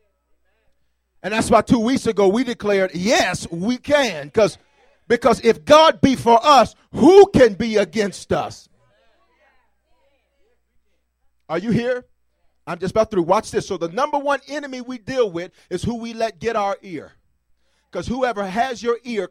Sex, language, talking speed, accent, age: male, English, 160 wpm, American, 40-59